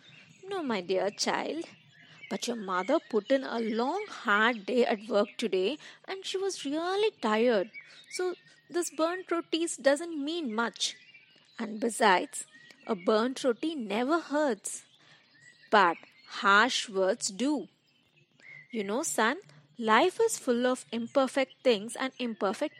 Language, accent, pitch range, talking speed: English, Indian, 210-300 Hz, 130 wpm